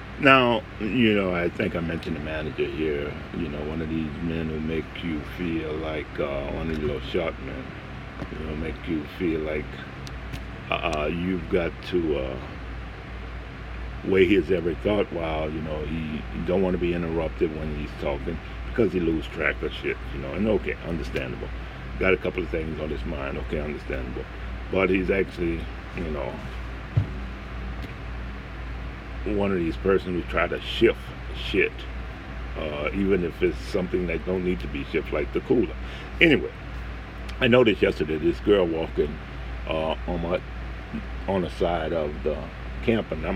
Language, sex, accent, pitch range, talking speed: English, male, American, 65-85 Hz, 170 wpm